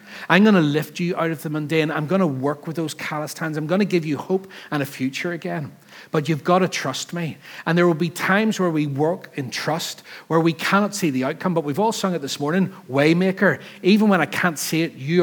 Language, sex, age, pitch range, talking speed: English, male, 40-59, 145-190 Hz, 250 wpm